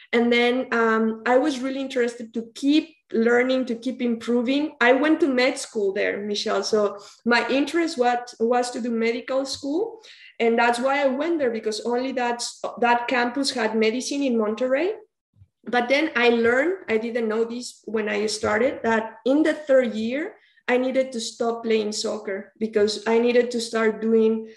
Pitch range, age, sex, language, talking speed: 225-265 Hz, 20-39, female, English, 175 wpm